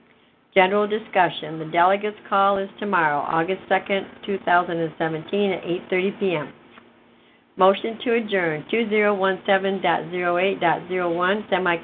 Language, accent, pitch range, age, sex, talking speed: English, American, 175-200 Hz, 60-79, female, 70 wpm